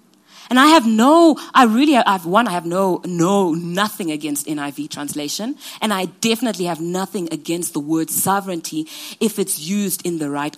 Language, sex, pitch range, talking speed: English, female, 195-285 Hz, 185 wpm